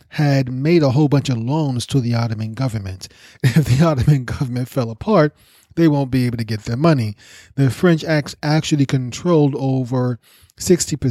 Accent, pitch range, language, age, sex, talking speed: American, 115-150 Hz, English, 30-49, male, 175 wpm